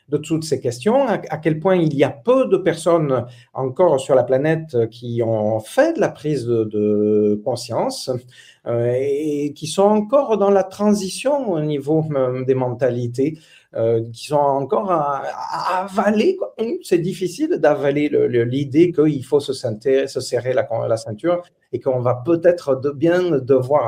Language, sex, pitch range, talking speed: French, male, 130-190 Hz, 145 wpm